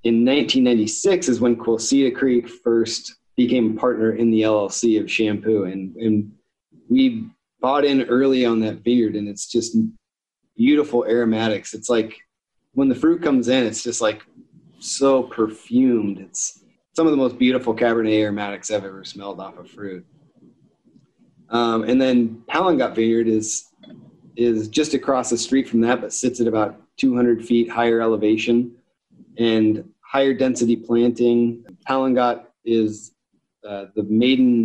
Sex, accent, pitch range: male, American, 110-125 Hz